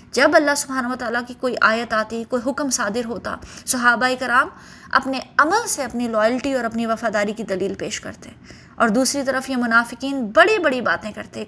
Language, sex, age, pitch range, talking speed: Urdu, female, 20-39, 220-285 Hz, 190 wpm